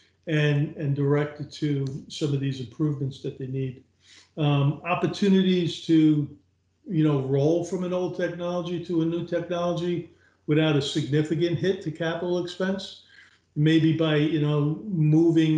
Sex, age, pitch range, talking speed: male, 50-69, 140-165 Hz, 145 wpm